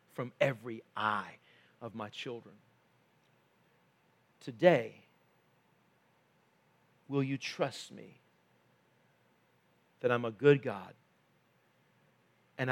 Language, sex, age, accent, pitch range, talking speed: English, male, 50-69, American, 120-145 Hz, 80 wpm